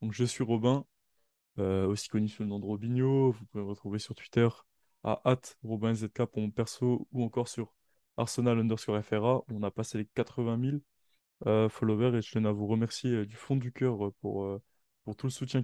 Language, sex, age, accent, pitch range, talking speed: French, male, 20-39, French, 105-125 Hz, 200 wpm